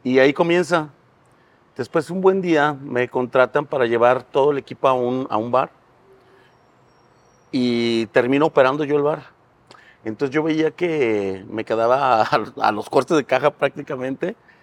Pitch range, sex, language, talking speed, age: 115-150 Hz, male, Spanish, 155 wpm, 40-59